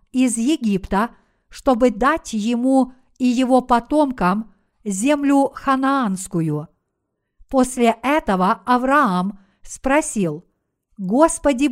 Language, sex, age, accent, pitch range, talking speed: Russian, female, 50-69, native, 210-270 Hz, 75 wpm